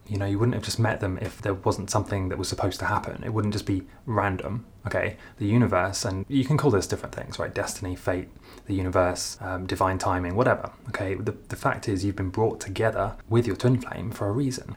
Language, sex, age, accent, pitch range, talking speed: English, male, 20-39, British, 95-120 Hz, 230 wpm